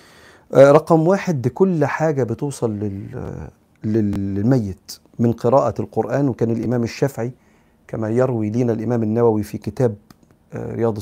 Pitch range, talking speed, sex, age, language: 110-125 Hz, 110 wpm, male, 40-59, Arabic